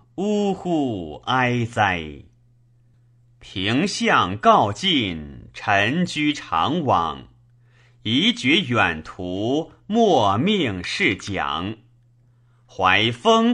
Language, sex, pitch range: Chinese, male, 115-150 Hz